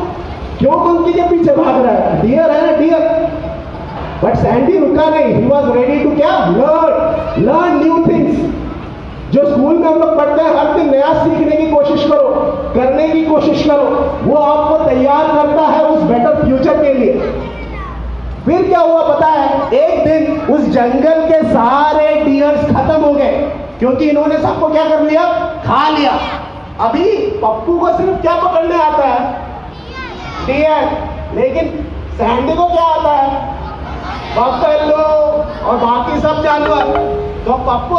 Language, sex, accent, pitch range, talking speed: Hindi, male, native, 285-320 Hz, 150 wpm